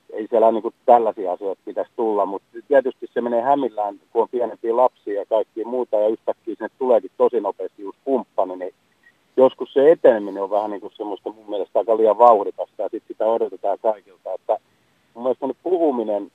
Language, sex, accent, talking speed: Finnish, male, native, 180 wpm